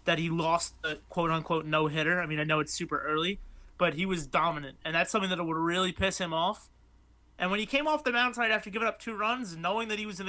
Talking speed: 255 wpm